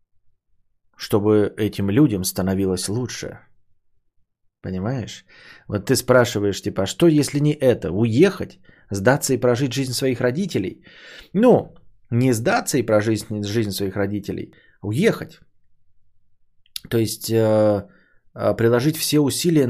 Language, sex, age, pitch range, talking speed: Bulgarian, male, 20-39, 100-130 Hz, 115 wpm